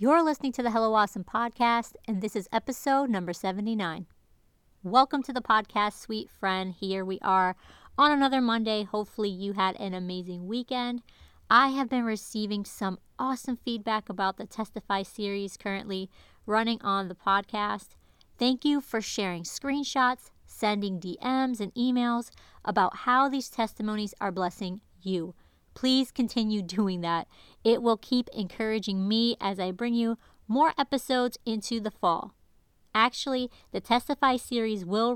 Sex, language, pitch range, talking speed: female, English, 200-245 Hz, 145 wpm